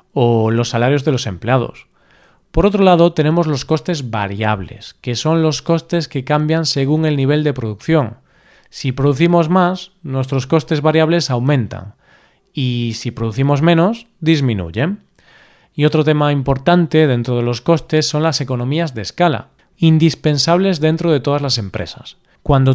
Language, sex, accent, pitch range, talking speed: Spanish, male, Spanish, 125-170 Hz, 150 wpm